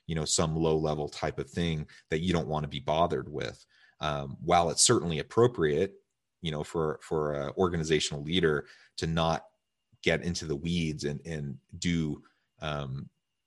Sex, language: male, English